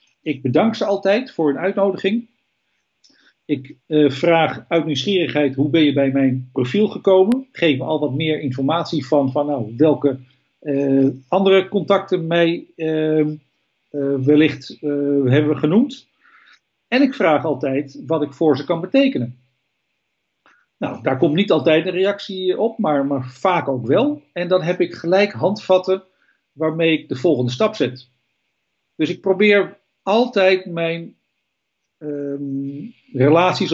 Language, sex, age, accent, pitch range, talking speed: Dutch, male, 50-69, Dutch, 140-185 Hz, 145 wpm